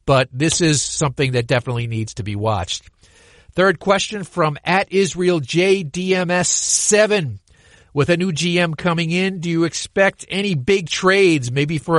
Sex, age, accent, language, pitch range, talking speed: male, 50-69, American, English, 125-165 Hz, 150 wpm